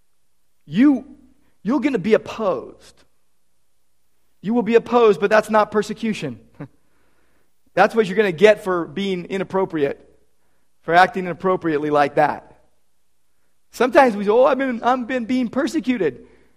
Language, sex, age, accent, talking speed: English, male, 40-59, American, 140 wpm